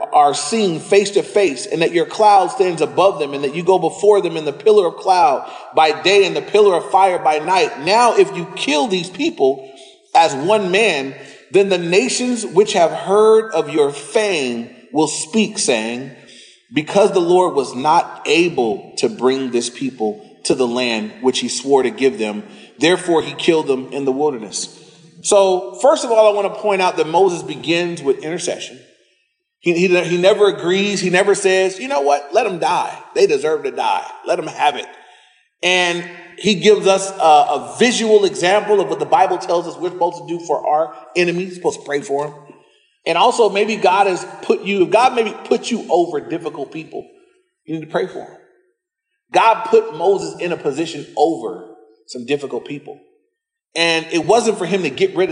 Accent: American